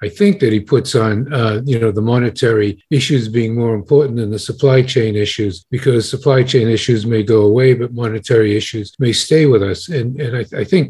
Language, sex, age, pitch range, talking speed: English, male, 50-69, 115-140 Hz, 215 wpm